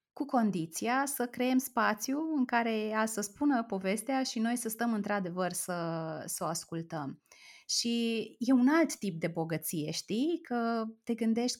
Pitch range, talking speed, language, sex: 180-225 Hz, 160 wpm, Romanian, female